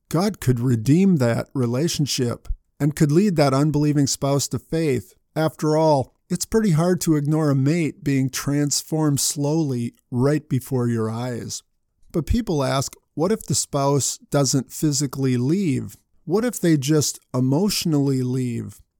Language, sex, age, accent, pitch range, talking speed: English, male, 50-69, American, 130-160 Hz, 140 wpm